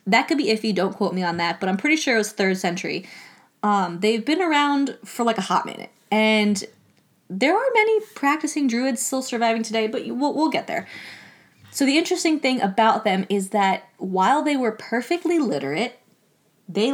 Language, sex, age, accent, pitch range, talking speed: English, female, 20-39, American, 190-255 Hz, 195 wpm